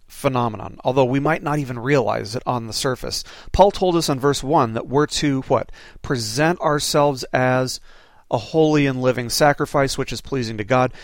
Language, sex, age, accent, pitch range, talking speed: English, male, 40-59, American, 125-150 Hz, 185 wpm